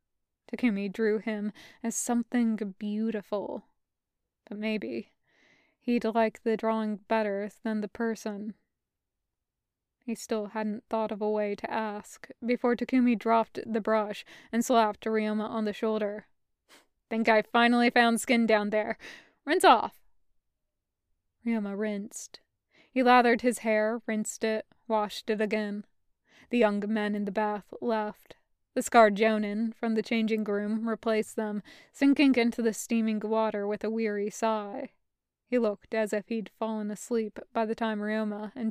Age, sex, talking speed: 20-39, female, 145 wpm